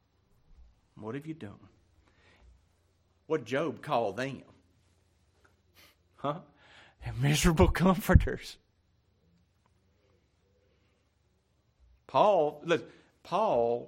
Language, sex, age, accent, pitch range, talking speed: English, male, 50-69, American, 100-165 Hz, 65 wpm